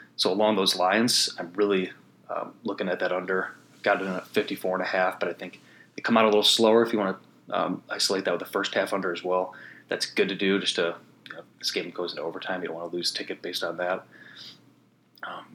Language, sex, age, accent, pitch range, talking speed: English, male, 30-49, American, 95-110 Hz, 245 wpm